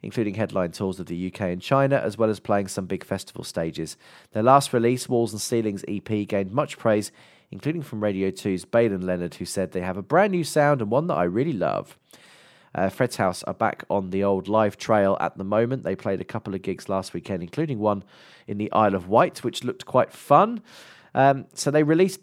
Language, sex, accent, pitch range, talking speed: English, male, British, 90-125 Hz, 225 wpm